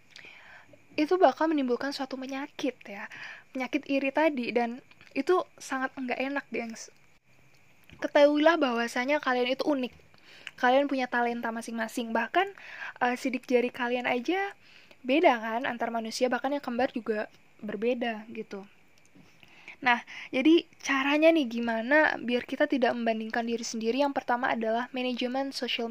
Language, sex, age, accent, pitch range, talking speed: Indonesian, female, 10-29, native, 225-270 Hz, 130 wpm